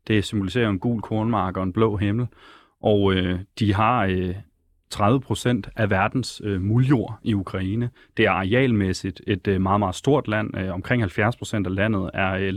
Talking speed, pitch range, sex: 175 wpm, 100-120 Hz, male